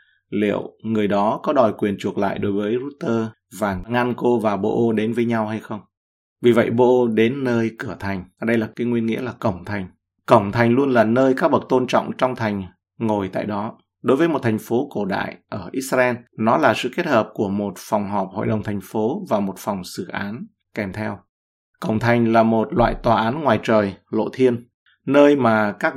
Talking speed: 215 wpm